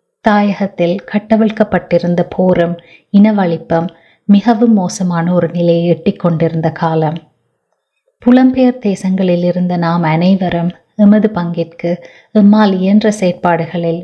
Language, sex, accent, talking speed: Tamil, female, native, 85 wpm